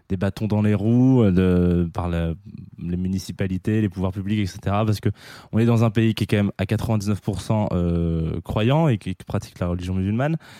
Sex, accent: male, French